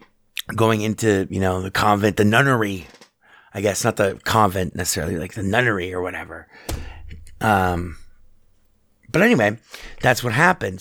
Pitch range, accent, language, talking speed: 100-140 Hz, American, English, 140 wpm